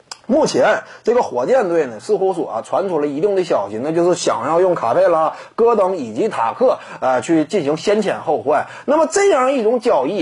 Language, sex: Chinese, male